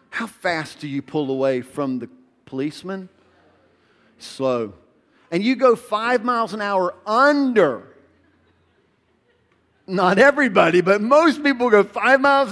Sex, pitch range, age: male, 155-225 Hz, 40-59